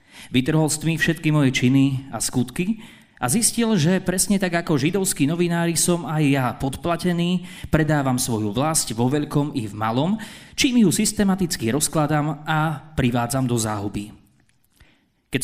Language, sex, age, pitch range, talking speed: Slovak, male, 30-49, 115-165 Hz, 135 wpm